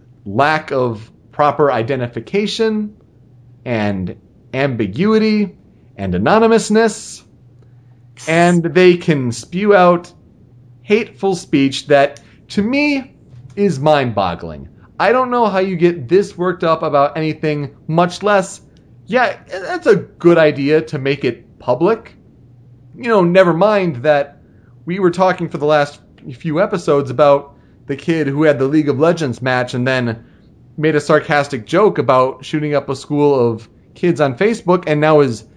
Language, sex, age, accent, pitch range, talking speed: English, male, 30-49, American, 125-170 Hz, 140 wpm